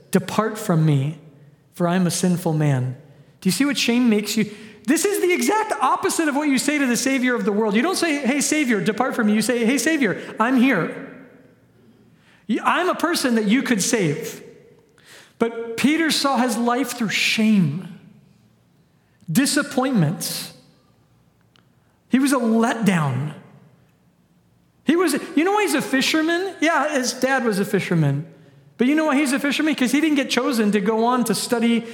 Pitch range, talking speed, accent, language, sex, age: 175-260 Hz, 180 wpm, American, English, male, 40-59